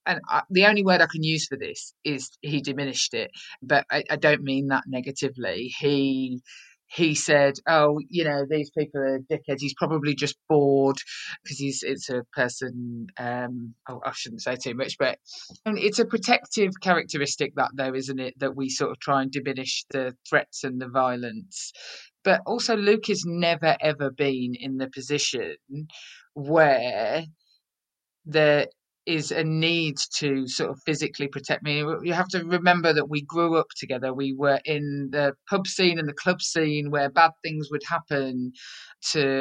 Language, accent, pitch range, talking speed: English, British, 135-165 Hz, 175 wpm